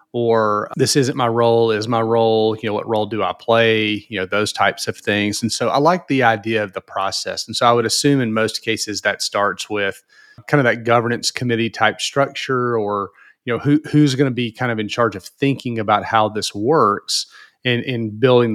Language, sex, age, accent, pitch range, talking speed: English, male, 30-49, American, 105-135 Hz, 225 wpm